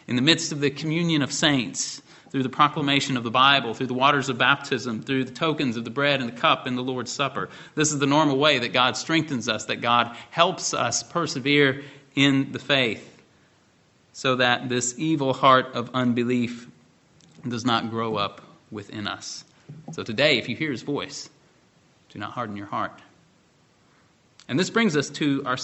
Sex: male